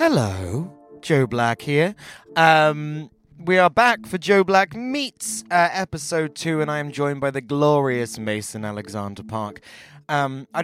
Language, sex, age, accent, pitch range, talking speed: English, male, 20-39, British, 115-150 Hz, 150 wpm